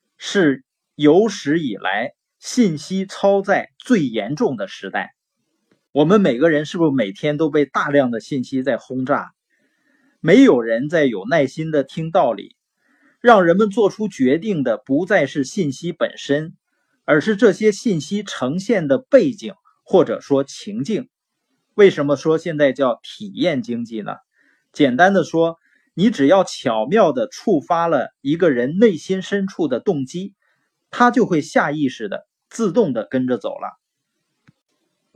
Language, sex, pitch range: Chinese, male, 145-220 Hz